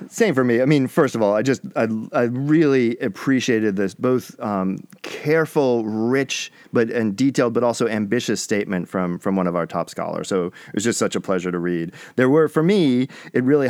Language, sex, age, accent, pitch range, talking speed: English, male, 40-59, American, 100-135 Hz, 210 wpm